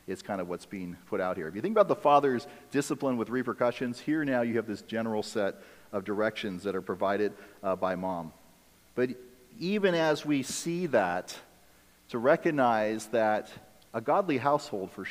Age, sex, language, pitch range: 40-59, male, English, 100-140 Hz